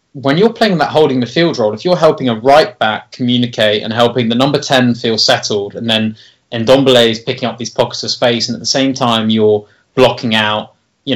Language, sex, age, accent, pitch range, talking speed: English, male, 20-39, British, 110-130 Hz, 220 wpm